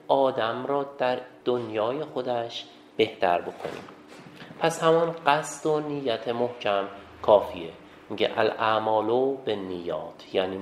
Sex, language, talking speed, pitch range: male, Persian, 105 wpm, 115-145 Hz